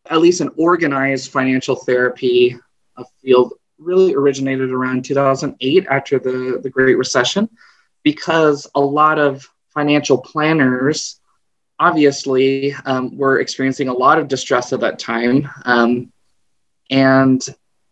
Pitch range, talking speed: 130-145 Hz, 115 wpm